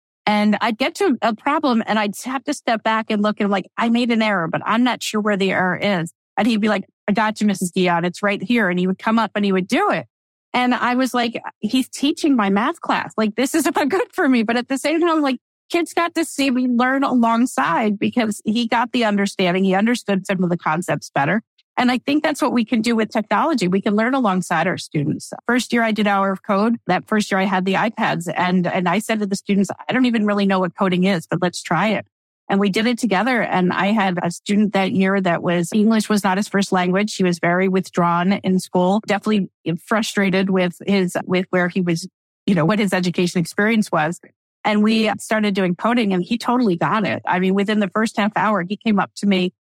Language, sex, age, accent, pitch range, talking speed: English, female, 40-59, American, 185-235 Hz, 245 wpm